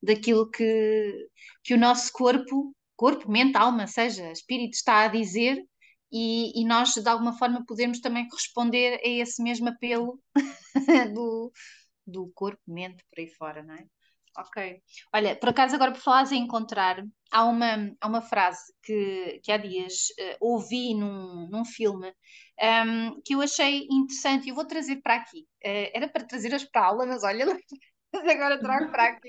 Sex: female